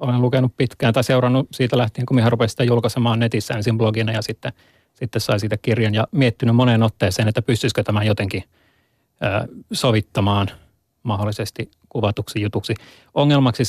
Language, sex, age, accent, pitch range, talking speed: Finnish, male, 30-49, native, 110-125 Hz, 155 wpm